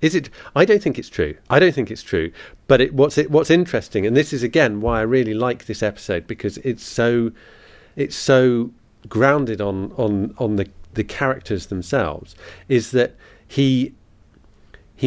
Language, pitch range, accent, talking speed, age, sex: English, 105-135 Hz, British, 175 wpm, 40-59, male